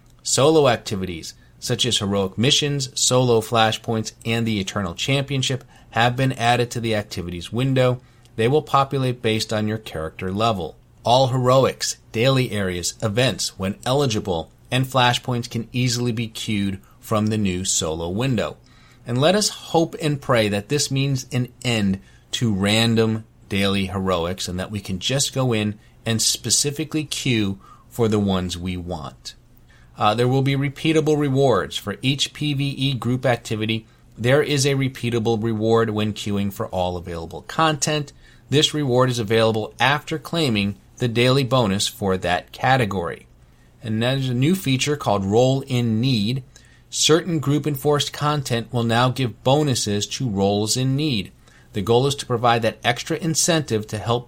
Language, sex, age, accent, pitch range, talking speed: English, male, 30-49, American, 105-135 Hz, 155 wpm